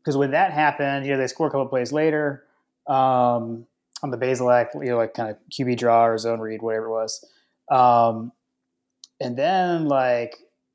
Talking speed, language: 190 wpm, English